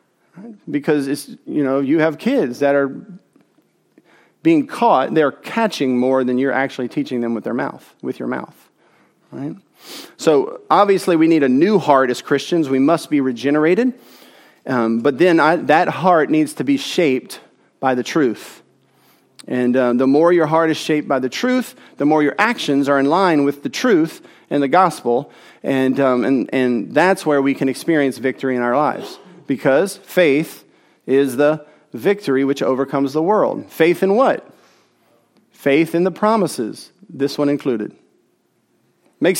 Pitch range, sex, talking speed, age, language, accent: 135-210 Hz, male, 165 wpm, 40-59, English, American